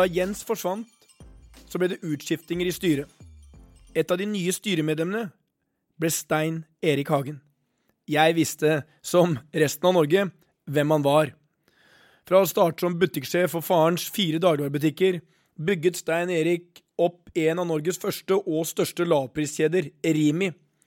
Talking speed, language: 130 wpm, English